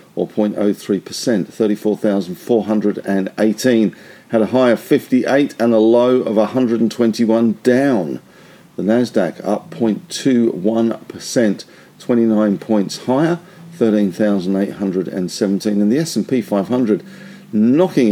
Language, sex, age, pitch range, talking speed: English, male, 50-69, 105-140 Hz, 85 wpm